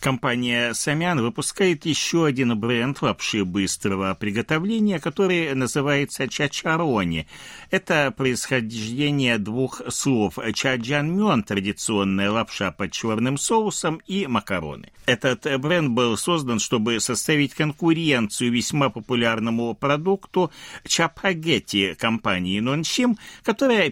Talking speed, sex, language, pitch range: 95 wpm, male, Russian, 110-155 Hz